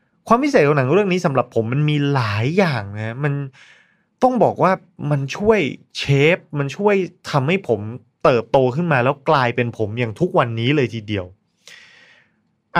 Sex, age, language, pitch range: male, 20-39, Thai, 115-175 Hz